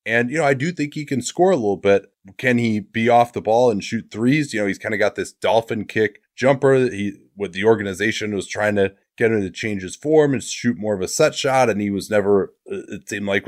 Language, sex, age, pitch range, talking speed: English, male, 20-39, 100-130 Hz, 265 wpm